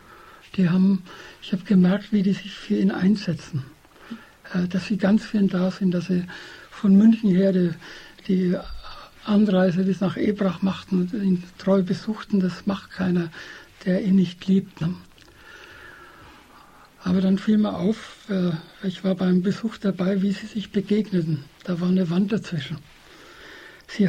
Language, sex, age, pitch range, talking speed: German, male, 60-79, 180-205 Hz, 150 wpm